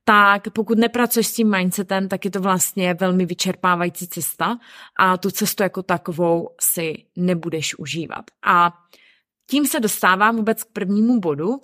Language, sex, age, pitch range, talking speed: Czech, female, 20-39, 180-230 Hz, 150 wpm